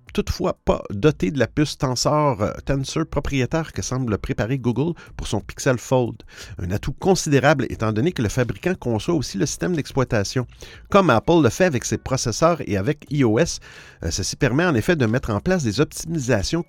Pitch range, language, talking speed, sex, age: 110-160 Hz, French, 185 wpm, male, 50-69